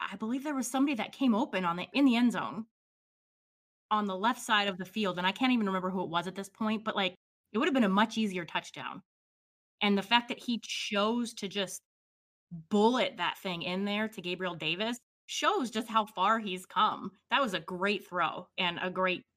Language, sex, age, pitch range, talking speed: English, female, 20-39, 180-225 Hz, 225 wpm